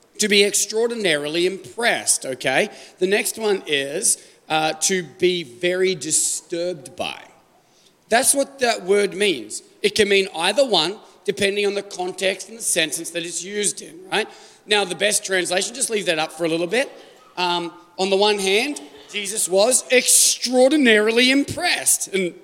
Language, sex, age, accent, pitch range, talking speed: English, male, 40-59, Australian, 180-260 Hz, 160 wpm